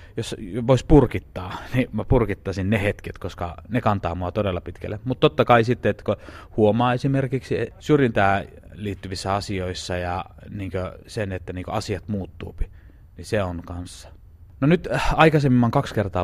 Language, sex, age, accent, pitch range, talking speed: Finnish, male, 30-49, native, 90-115 Hz, 150 wpm